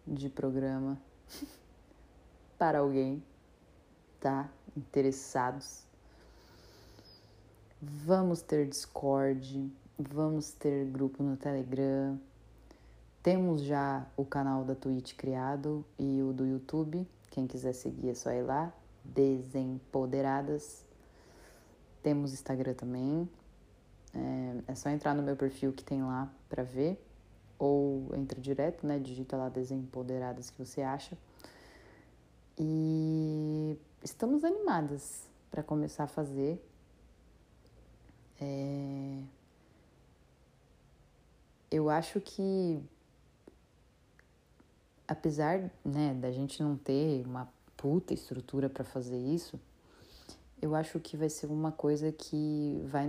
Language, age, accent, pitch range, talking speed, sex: Portuguese, 30-49, Brazilian, 130-150 Hz, 100 wpm, female